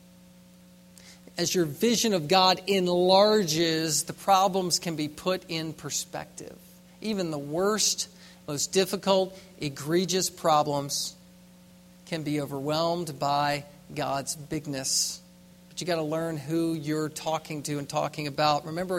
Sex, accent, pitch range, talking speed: male, American, 150-180 Hz, 125 wpm